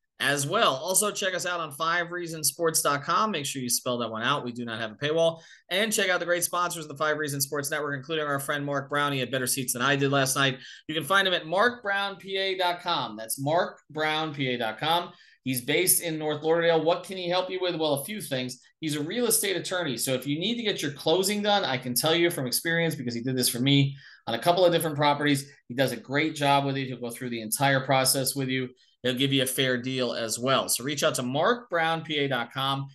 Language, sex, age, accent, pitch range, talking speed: English, male, 30-49, American, 130-165 Hz, 235 wpm